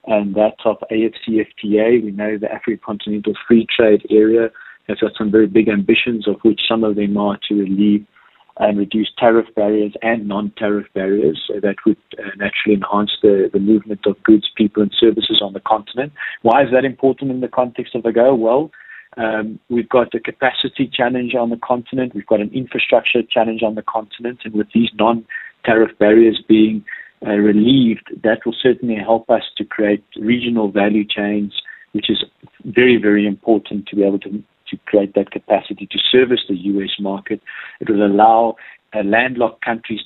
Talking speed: 175 wpm